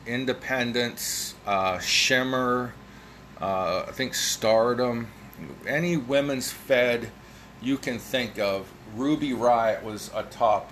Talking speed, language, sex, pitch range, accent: 105 wpm, English, male, 105-130 Hz, American